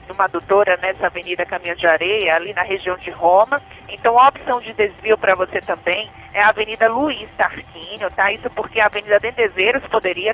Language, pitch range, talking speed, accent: Portuguese, 205-255 Hz, 185 wpm, Brazilian